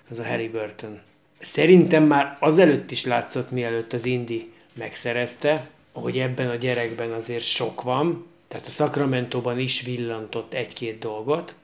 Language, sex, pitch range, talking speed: Hungarian, male, 115-140 Hz, 135 wpm